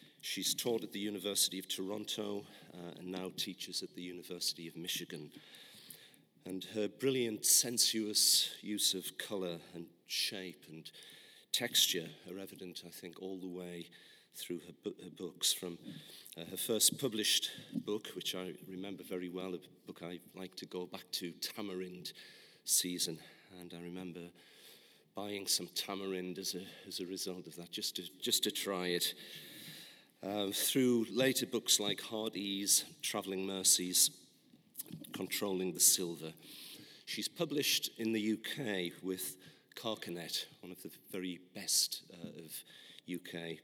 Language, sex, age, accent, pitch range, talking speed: English, male, 40-59, British, 85-100 Hz, 140 wpm